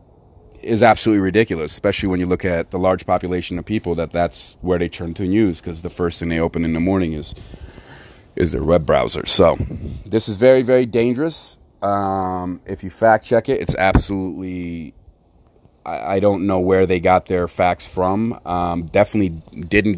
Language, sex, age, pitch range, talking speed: English, male, 30-49, 85-105 Hz, 185 wpm